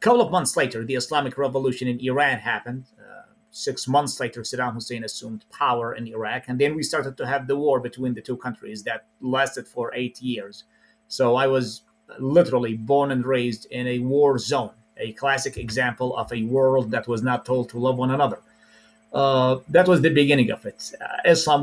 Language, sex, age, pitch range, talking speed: English, male, 30-49, 120-145 Hz, 200 wpm